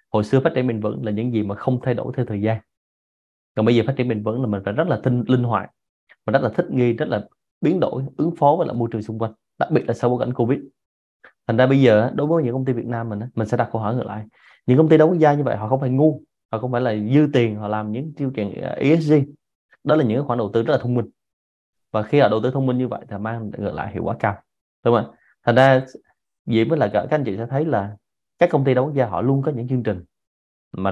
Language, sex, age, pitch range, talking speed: Vietnamese, male, 20-39, 105-130 Hz, 290 wpm